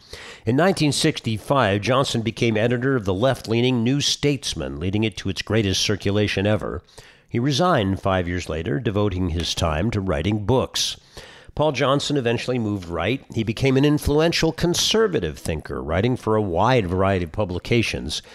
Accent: American